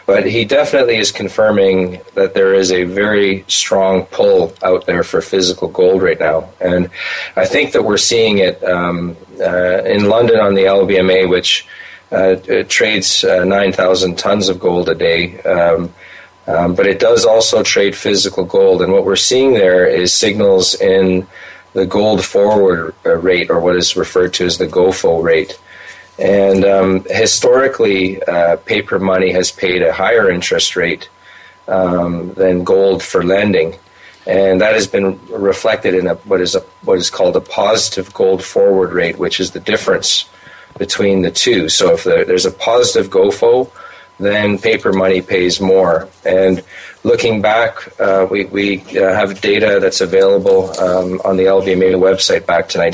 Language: English